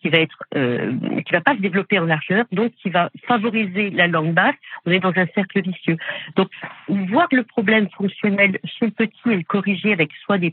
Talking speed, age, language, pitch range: 210 wpm, 50-69, French, 160-205 Hz